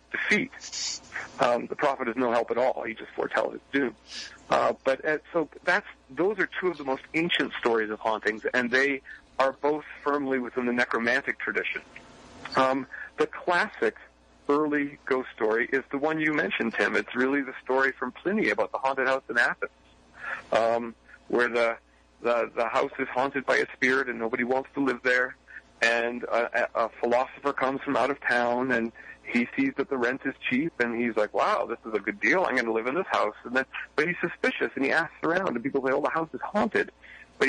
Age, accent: 40-59, American